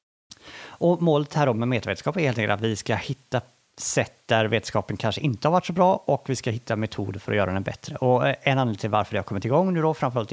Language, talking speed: Swedish, 255 wpm